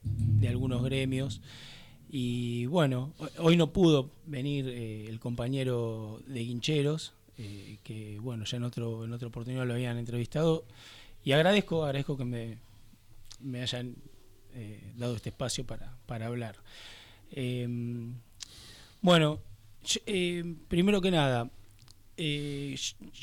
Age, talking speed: 20-39, 120 wpm